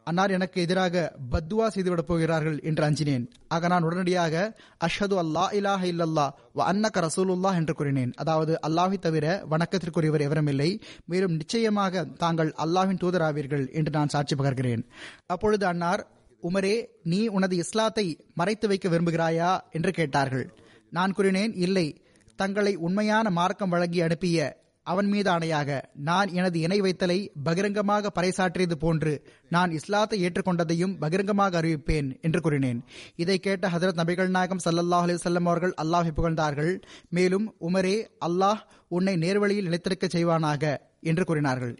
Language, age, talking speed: Tamil, 20-39, 115 wpm